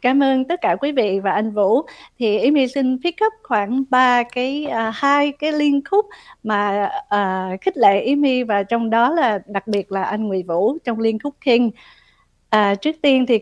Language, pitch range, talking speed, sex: Vietnamese, 215-275 Hz, 205 wpm, female